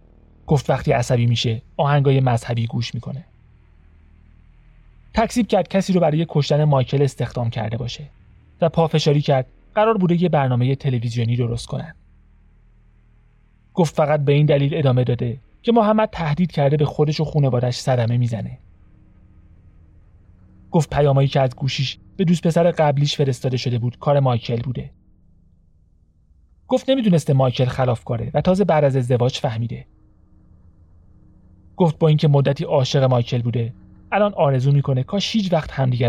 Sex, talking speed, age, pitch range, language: male, 140 wpm, 30-49, 105-150 Hz, Persian